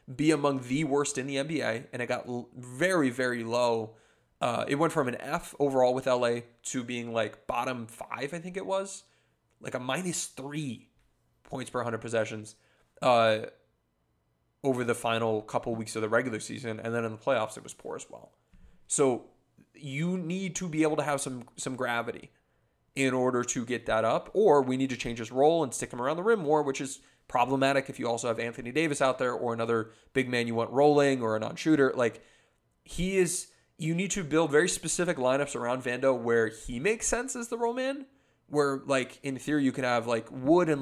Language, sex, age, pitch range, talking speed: English, male, 20-39, 120-150 Hz, 205 wpm